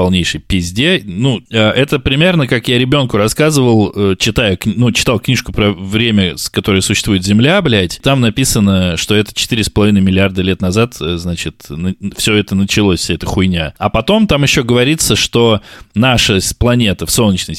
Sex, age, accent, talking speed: male, 20-39, native, 150 wpm